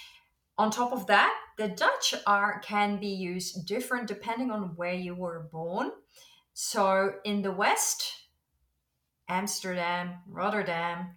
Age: 30-49